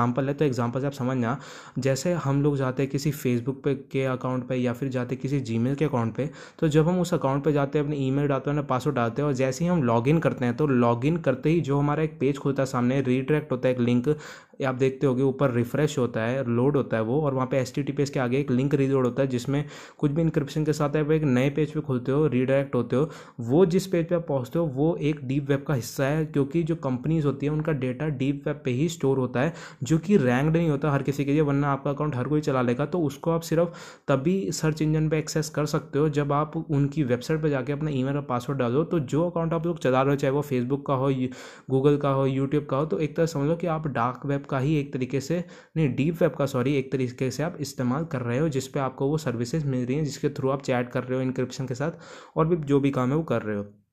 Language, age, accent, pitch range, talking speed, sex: Hindi, 20-39, native, 130-155 Hz, 270 wpm, male